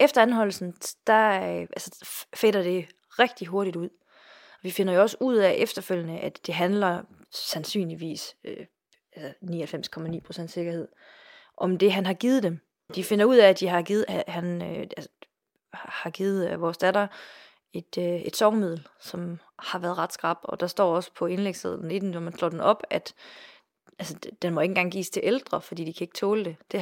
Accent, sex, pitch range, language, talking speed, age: native, female, 175-205 Hz, Danish, 185 wpm, 30-49